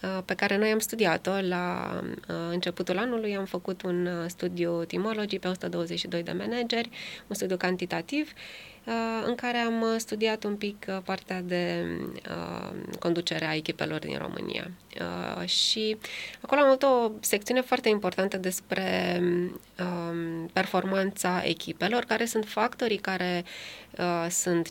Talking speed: 120 wpm